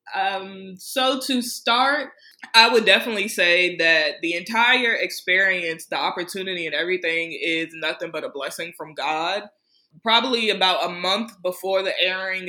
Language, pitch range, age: English, 175-220 Hz, 20-39